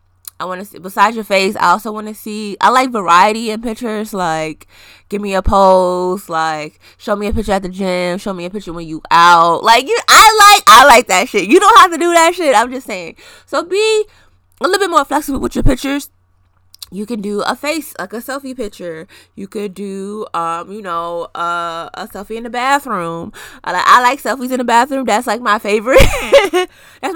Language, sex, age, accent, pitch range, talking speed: English, female, 20-39, American, 170-275 Hz, 220 wpm